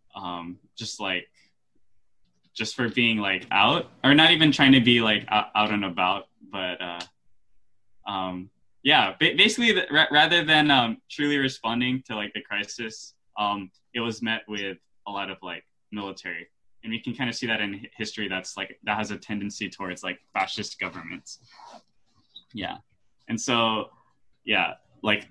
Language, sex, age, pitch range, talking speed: English, male, 10-29, 100-115 Hz, 155 wpm